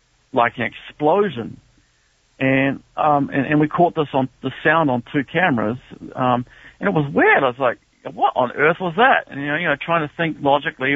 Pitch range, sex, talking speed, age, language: 130-165 Hz, male, 210 wpm, 50-69, English